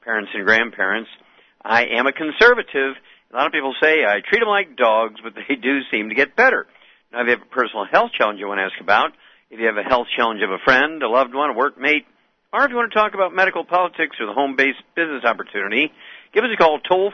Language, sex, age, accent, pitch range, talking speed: English, male, 50-69, American, 120-150 Hz, 245 wpm